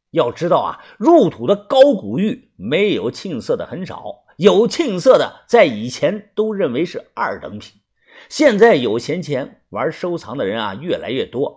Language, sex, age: Chinese, male, 50-69